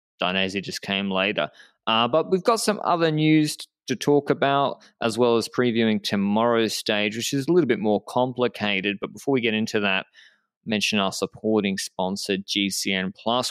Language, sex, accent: English, male, Australian